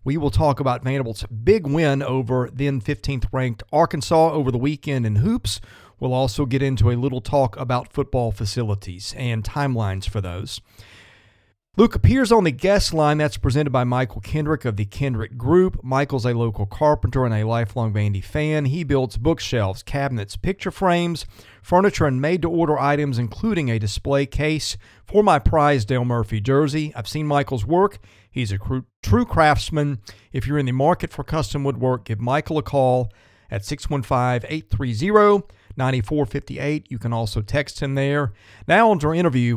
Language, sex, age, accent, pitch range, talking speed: English, male, 40-59, American, 105-145 Hz, 165 wpm